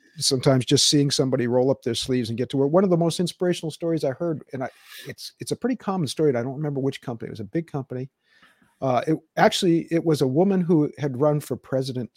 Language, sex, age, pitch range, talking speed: English, male, 50-69, 125-160 Hz, 245 wpm